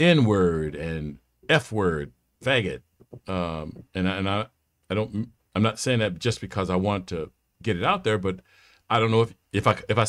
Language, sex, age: English, male, 50-69